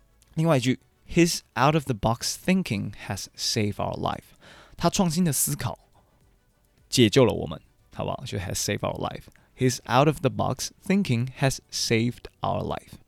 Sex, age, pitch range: male, 20-39, 100-130 Hz